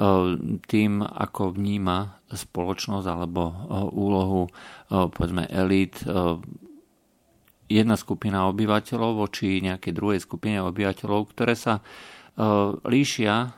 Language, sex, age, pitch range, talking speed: Slovak, male, 50-69, 90-105 Hz, 85 wpm